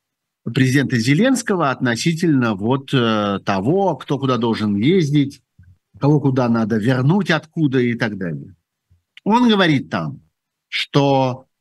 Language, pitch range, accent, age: Russian, 125-190 Hz, native, 50-69